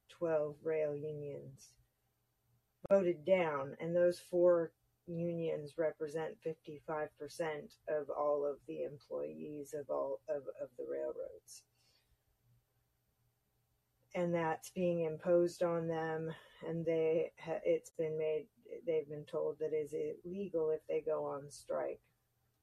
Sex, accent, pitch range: female, American, 145-170 Hz